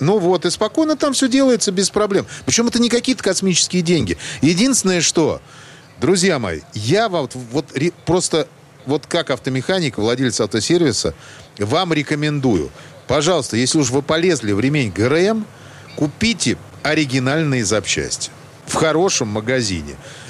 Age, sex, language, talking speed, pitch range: 40-59, male, Russian, 125 wpm, 130-175 Hz